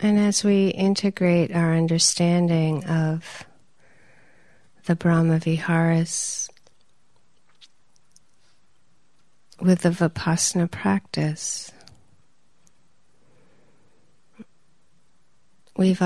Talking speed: 55 wpm